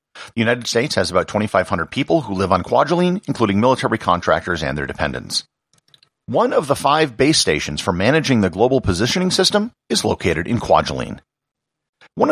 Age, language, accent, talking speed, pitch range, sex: 50-69, English, American, 165 wpm, 90-125 Hz, male